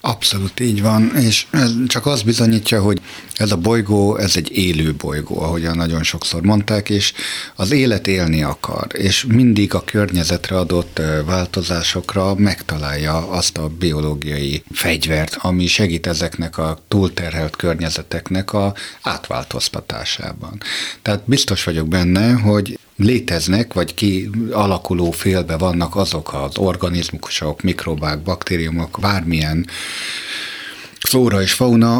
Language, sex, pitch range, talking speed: Hungarian, male, 85-110 Hz, 120 wpm